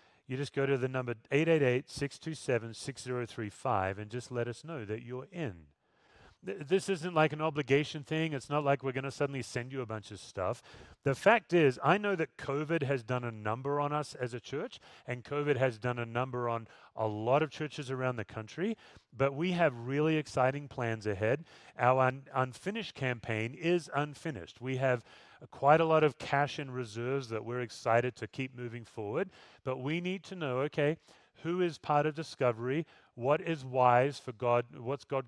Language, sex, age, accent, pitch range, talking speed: English, male, 40-59, American, 120-145 Hz, 185 wpm